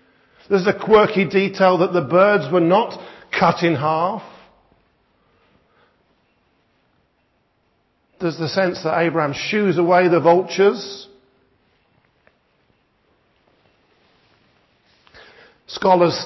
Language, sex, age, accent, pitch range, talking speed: English, male, 50-69, British, 160-200 Hz, 80 wpm